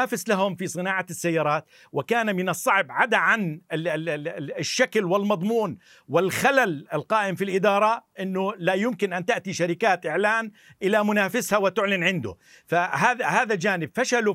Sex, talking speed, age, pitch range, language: male, 125 wpm, 50-69, 180-225 Hz, Arabic